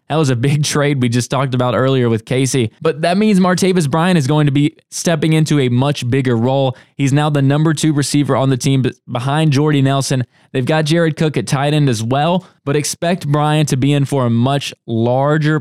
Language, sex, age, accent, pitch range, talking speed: English, male, 20-39, American, 125-150 Hz, 225 wpm